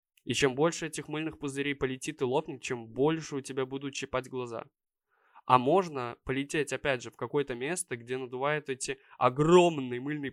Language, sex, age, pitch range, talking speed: Russian, male, 20-39, 125-160 Hz, 170 wpm